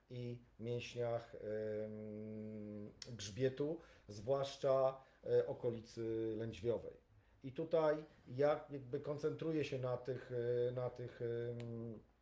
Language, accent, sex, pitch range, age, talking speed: Polish, native, male, 115-135 Hz, 40-59, 75 wpm